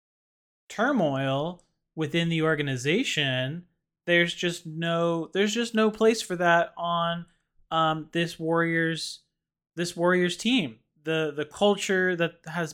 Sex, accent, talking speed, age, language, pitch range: male, American, 120 wpm, 20-39, English, 150-175 Hz